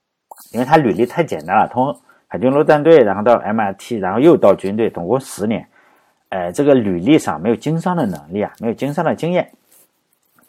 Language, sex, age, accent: Chinese, male, 50-69, native